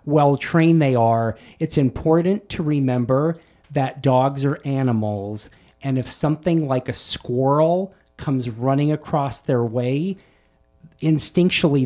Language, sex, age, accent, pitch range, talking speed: English, male, 40-59, American, 125-165 Hz, 115 wpm